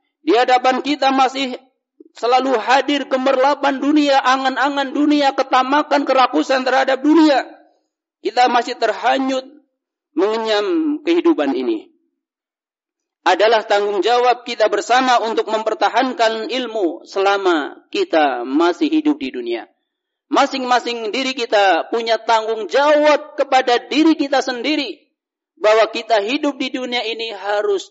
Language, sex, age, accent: Indonesian, male, 50-69, native